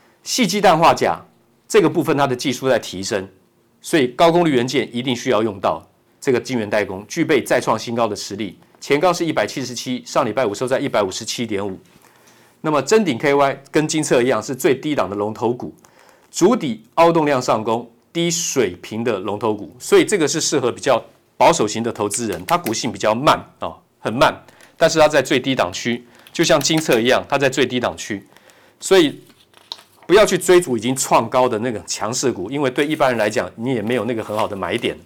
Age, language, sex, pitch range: 50-69, Chinese, male, 125-180 Hz